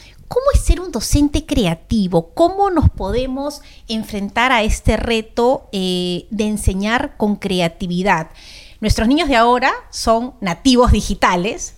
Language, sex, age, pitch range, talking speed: Spanish, female, 30-49, 185-255 Hz, 125 wpm